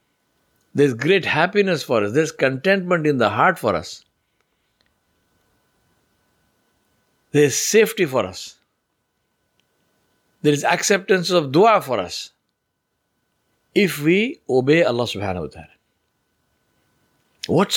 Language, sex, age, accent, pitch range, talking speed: English, male, 60-79, Indian, 110-160 Hz, 110 wpm